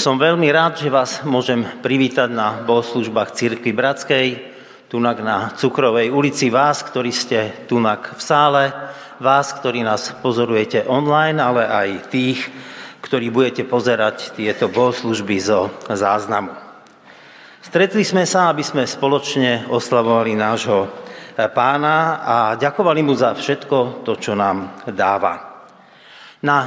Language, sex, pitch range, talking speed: Slovak, male, 120-145 Hz, 125 wpm